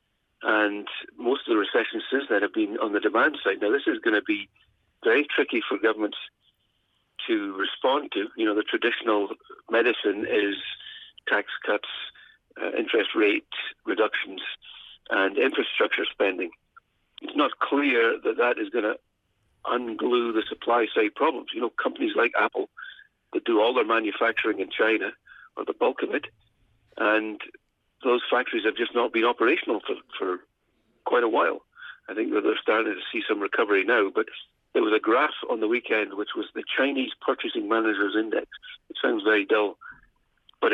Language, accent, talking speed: English, British, 165 wpm